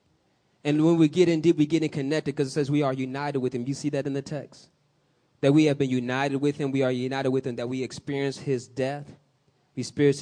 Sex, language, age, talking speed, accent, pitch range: male, English, 20-39, 255 wpm, American, 130-155 Hz